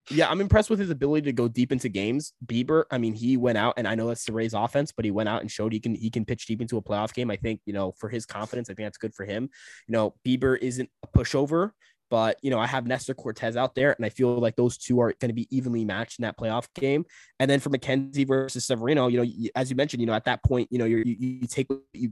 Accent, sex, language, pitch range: American, male, English, 110-125 Hz